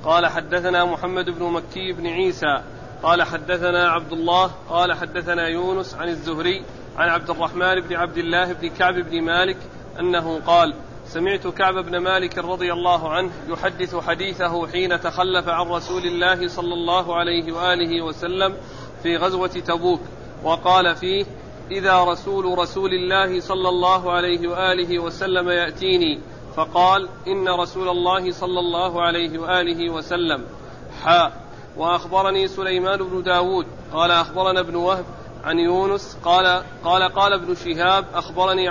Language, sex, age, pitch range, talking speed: Arabic, male, 40-59, 170-185 Hz, 135 wpm